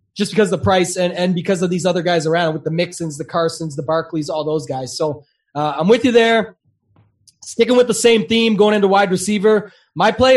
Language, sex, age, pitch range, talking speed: English, male, 20-39, 185-220 Hz, 230 wpm